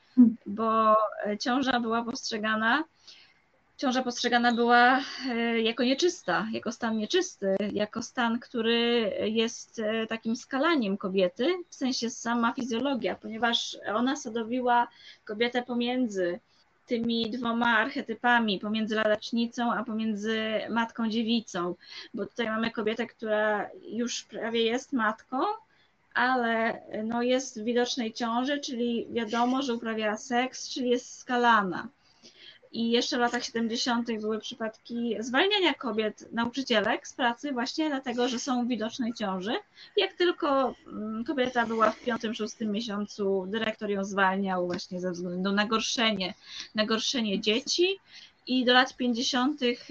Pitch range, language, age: 220-245 Hz, Polish, 20-39